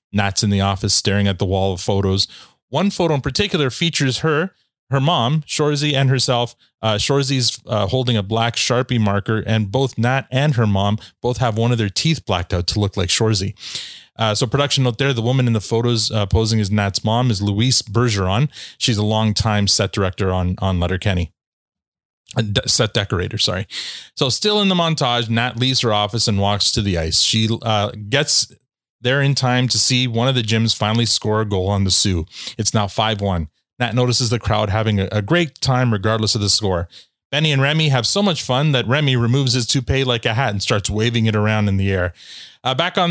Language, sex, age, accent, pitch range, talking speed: English, male, 30-49, American, 105-130 Hz, 210 wpm